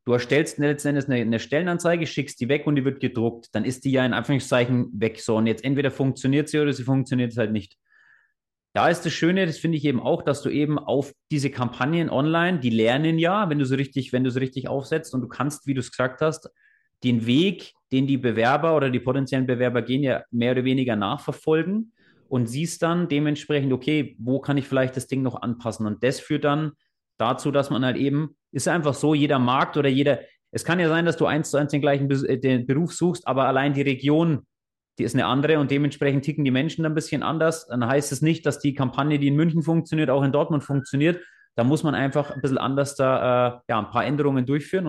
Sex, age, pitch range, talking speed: male, 30-49, 125-150 Hz, 230 wpm